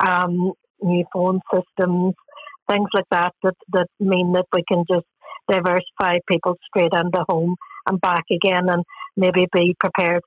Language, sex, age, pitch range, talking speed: English, female, 60-79, 180-200 Hz, 150 wpm